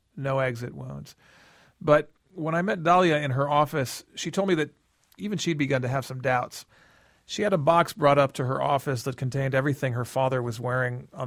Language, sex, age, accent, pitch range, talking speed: English, male, 40-59, American, 130-155 Hz, 210 wpm